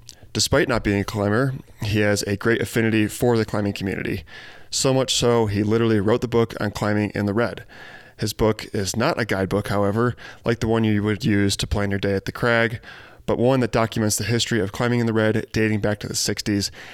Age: 20-39